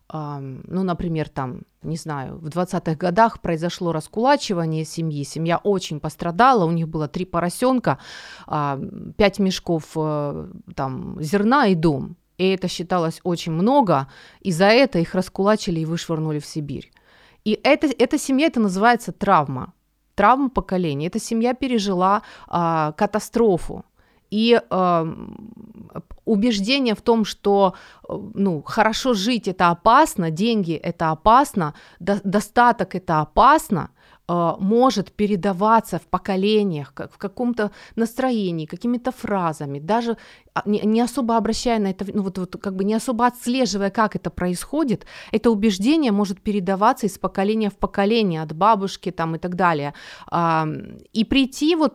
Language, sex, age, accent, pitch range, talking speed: Ukrainian, female, 30-49, native, 170-225 Hz, 130 wpm